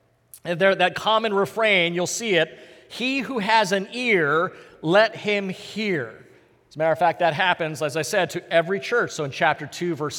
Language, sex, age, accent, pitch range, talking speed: English, male, 40-59, American, 155-225 Hz, 200 wpm